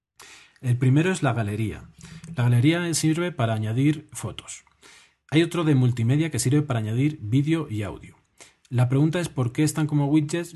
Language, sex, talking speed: Spanish, male, 170 wpm